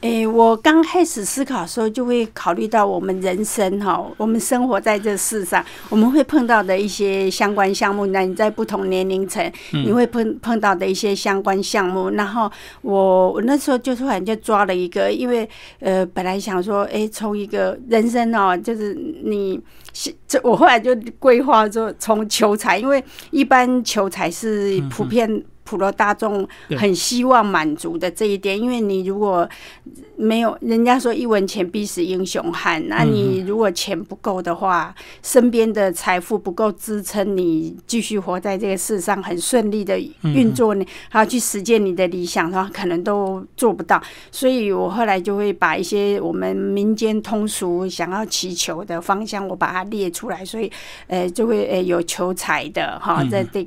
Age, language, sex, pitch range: 50-69, Chinese, female, 190-225 Hz